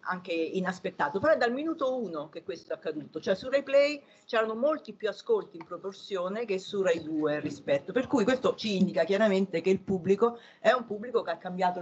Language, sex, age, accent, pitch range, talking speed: Italian, female, 40-59, native, 170-220 Hz, 210 wpm